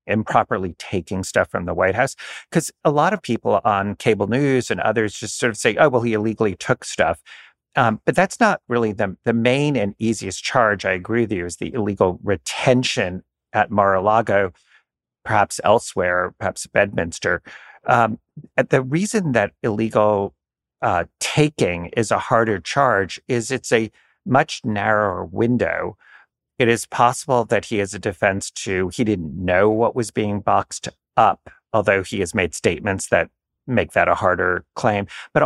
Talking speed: 170 wpm